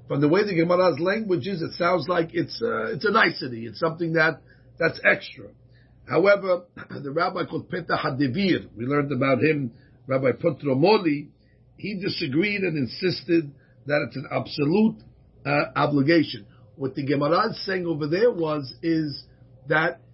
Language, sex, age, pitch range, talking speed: Spanish, male, 50-69, 135-180 Hz, 150 wpm